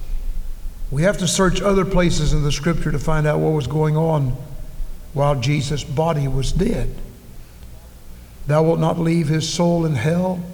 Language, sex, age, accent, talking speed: English, male, 60-79, American, 165 wpm